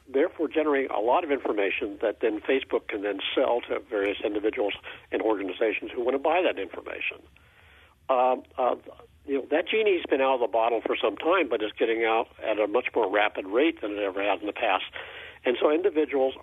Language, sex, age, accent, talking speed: English, male, 50-69, American, 210 wpm